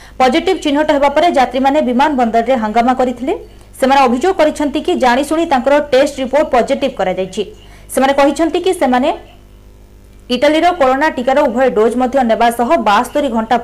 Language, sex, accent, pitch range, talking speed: Hindi, female, native, 210-295 Hz, 50 wpm